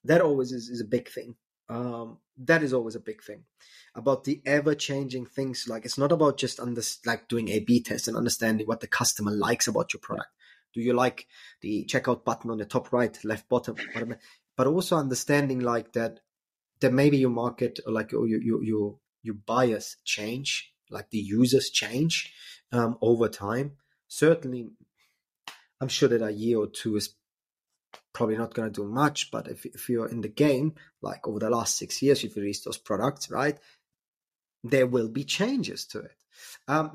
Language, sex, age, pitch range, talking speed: English, male, 20-39, 115-140 Hz, 185 wpm